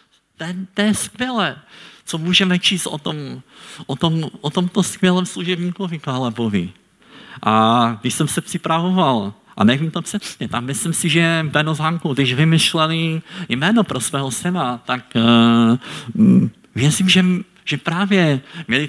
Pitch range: 120-175 Hz